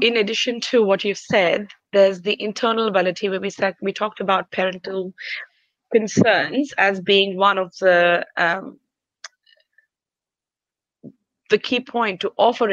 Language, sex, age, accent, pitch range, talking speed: English, female, 20-39, Indian, 190-230 Hz, 135 wpm